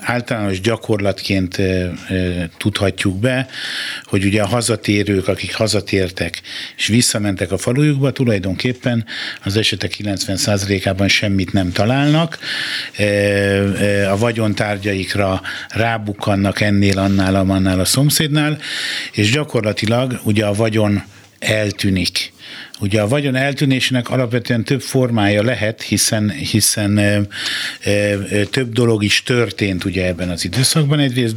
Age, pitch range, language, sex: 50-69, 100-125 Hz, Hungarian, male